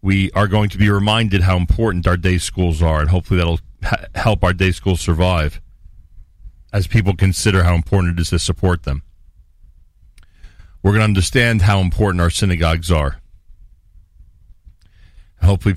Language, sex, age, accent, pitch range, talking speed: English, male, 40-59, American, 85-100 Hz, 155 wpm